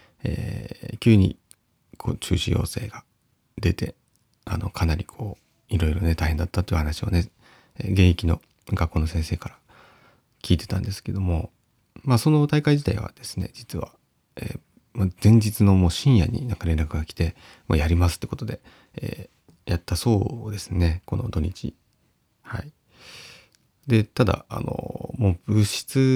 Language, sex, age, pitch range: Japanese, male, 30-49, 90-115 Hz